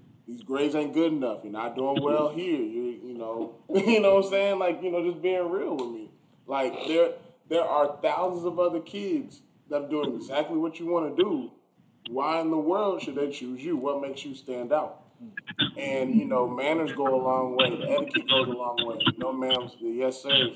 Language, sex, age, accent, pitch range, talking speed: English, male, 20-39, American, 125-175 Hz, 225 wpm